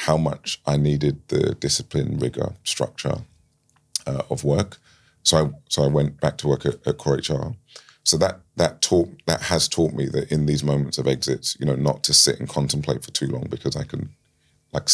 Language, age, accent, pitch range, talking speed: English, 30-49, British, 70-80 Hz, 205 wpm